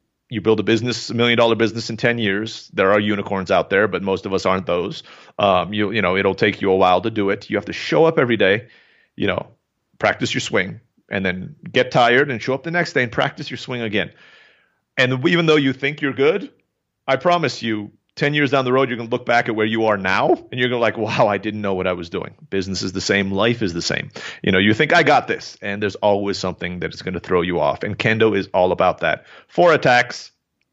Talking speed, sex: 255 wpm, male